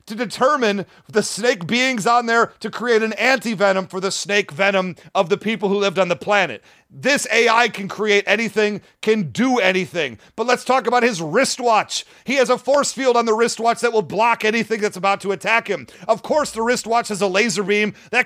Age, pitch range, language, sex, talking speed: 40-59, 205-245 Hz, English, male, 205 wpm